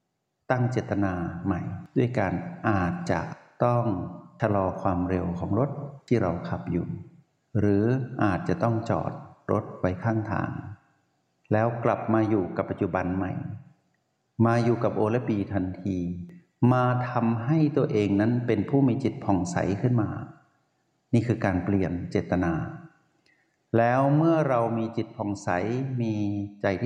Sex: male